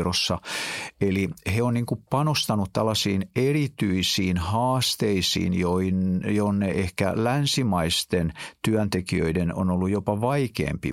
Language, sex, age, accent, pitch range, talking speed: Finnish, male, 50-69, native, 90-110 Hz, 95 wpm